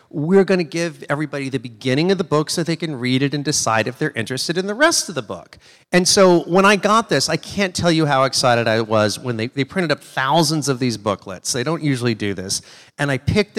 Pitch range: 130-170 Hz